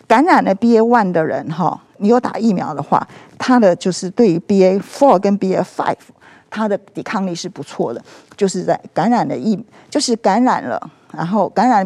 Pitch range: 185-245 Hz